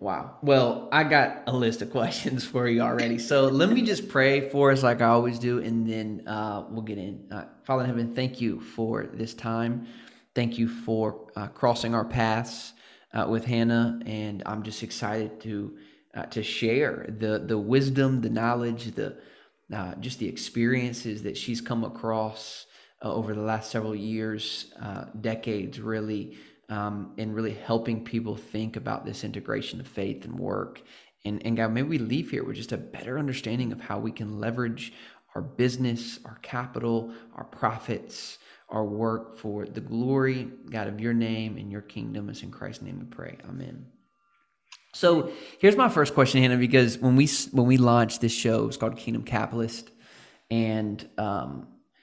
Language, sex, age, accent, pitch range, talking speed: English, male, 20-39, American, 110-125 Hz, 180 wpm